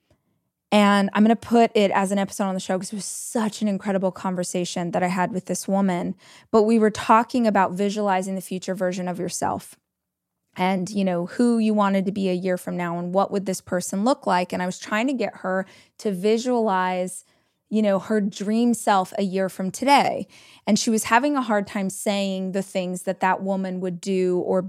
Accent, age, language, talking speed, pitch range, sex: American, 20-39, English, 215 wpm, 190-215 Hz, female